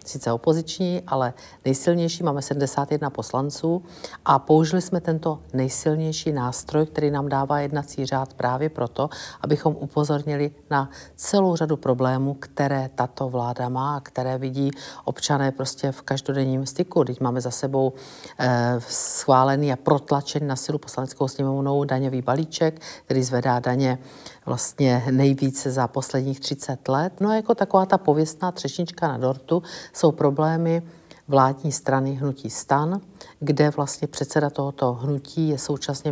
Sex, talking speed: female, 140 wpm